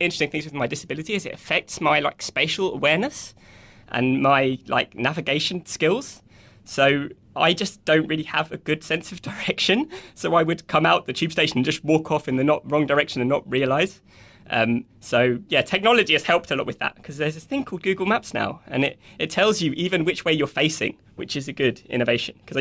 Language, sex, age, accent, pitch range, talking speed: English, male, 20-39, British, 120-160 Hz, 220 wpm